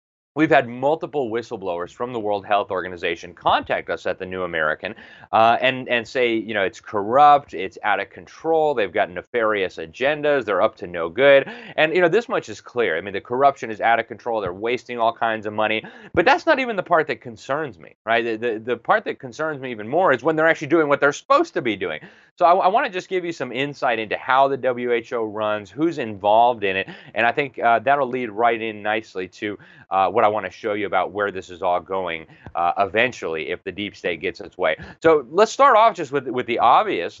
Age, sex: 30-49, male